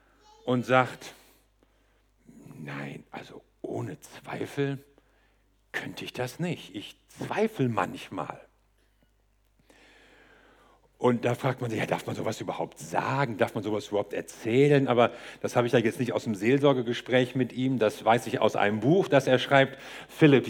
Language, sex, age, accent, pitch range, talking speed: German, male, 50-69, German, 125-175 Hz, 150 wpm